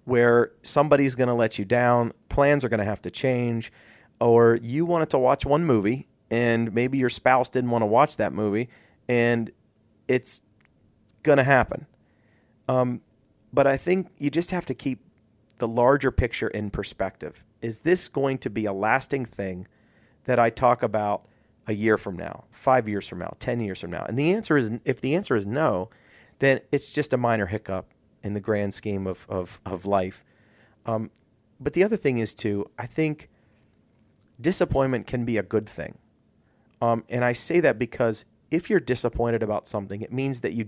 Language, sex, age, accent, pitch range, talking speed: English, male, 40-59, American, 110-135 Hz, 185 wpm